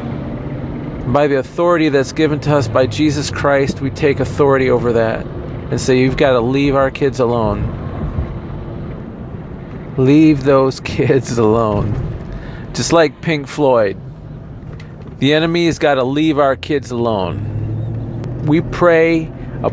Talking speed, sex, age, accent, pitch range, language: 135 wpm, male, 40-59, American, 120-145 Hz, English